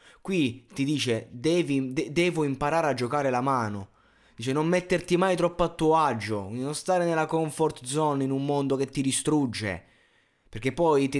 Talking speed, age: 175 wpm, 20-39